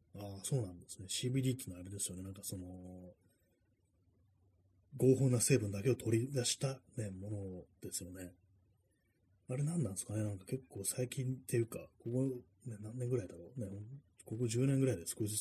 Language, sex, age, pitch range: Japanese, male, 30-49, 95-125 Hz